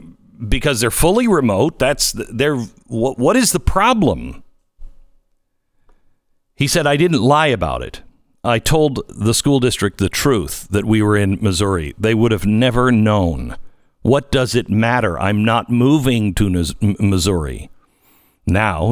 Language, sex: English, male